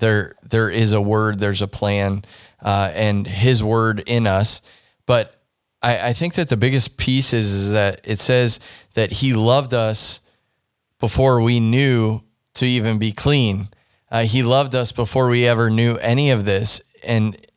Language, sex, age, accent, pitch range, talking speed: English, male, 20-39, American, 110-130 Hz, 170 wpm